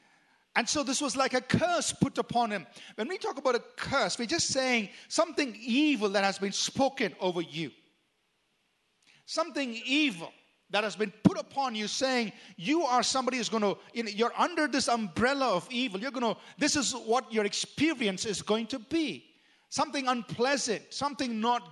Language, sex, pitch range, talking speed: English, male, 200-265 Hz, 175 wpm